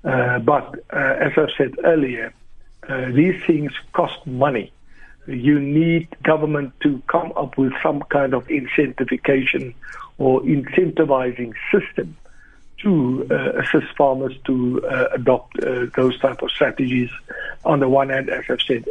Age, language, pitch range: 60-79, English, 125-145 Hz